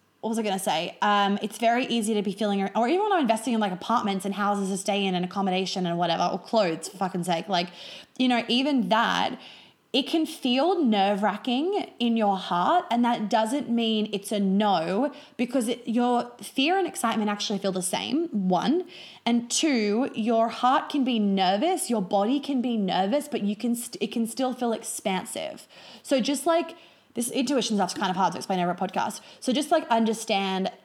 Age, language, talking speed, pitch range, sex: 20-39, English, 200 wpm, 200-240 Hz, female